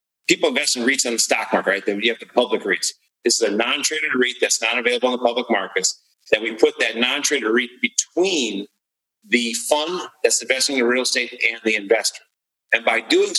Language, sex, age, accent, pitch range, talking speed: English, male, 40-59, American, 115-130 Hz, 210 wpm